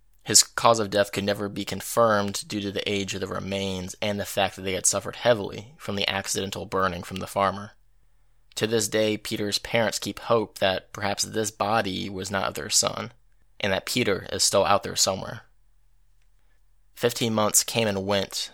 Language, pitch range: English, 95-105 Hz